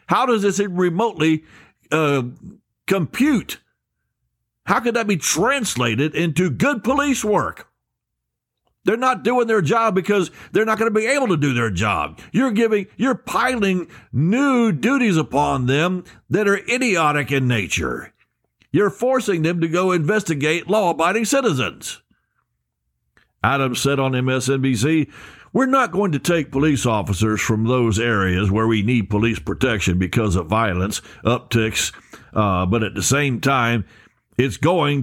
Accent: American